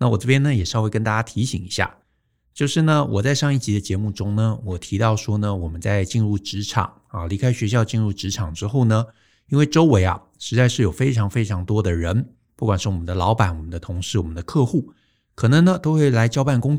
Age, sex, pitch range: 50-69, male, 100-125 Hz